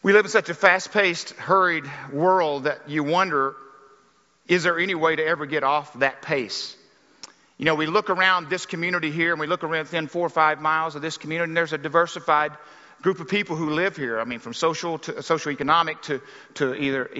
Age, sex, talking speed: 50-69, male, 215 wpm